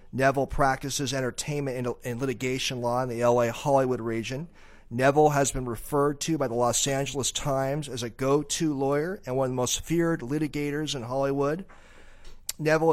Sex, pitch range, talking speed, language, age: male, 125-145 Hz, 165 wpm, English, 40-59